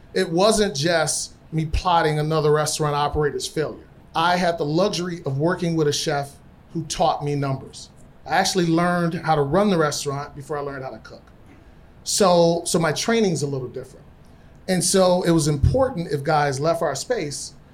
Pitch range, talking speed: 145-175 Hz, 180 wpm